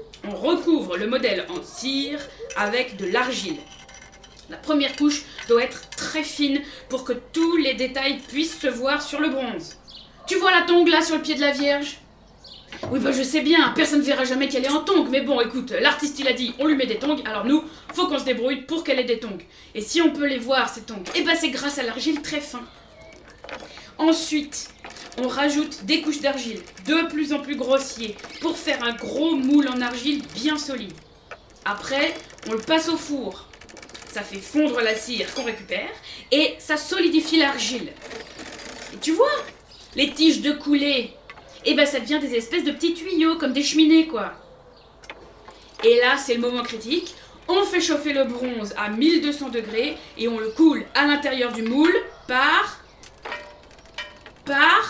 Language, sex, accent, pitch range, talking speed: French, female, French, 255-315 Hz, 185 wpm